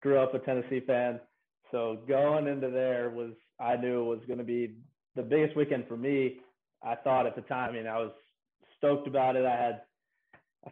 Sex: male